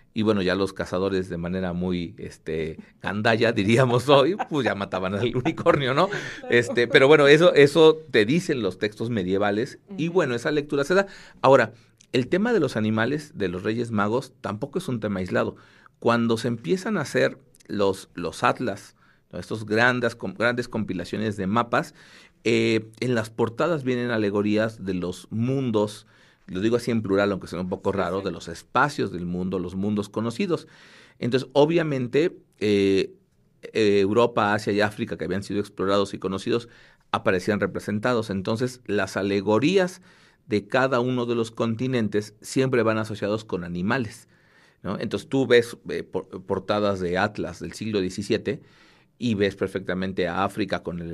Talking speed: 165 wpm